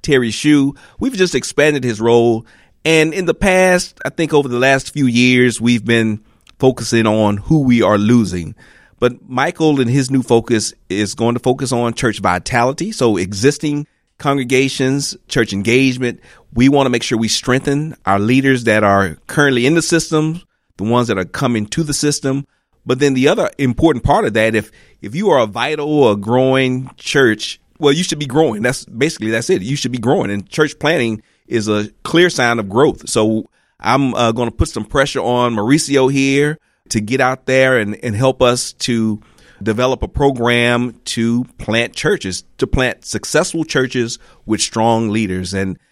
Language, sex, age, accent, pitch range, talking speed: English, male, 40-59, American, 110-135 Hz, 180 wpm